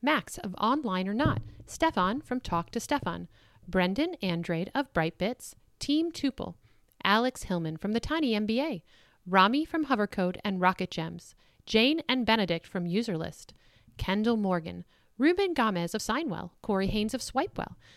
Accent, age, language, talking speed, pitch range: American, 40-59, English, 145 wpm, 175-255 Hz